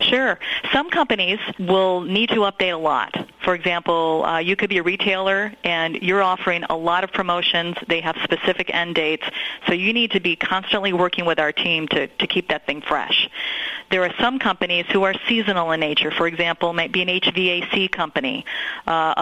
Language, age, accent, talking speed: English, 40-59, American, 195 wpm